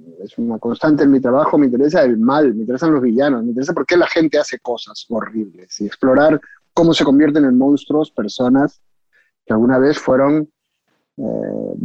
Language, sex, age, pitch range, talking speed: Spanish, male, 30-49, 130-160 Hz, 180 wpm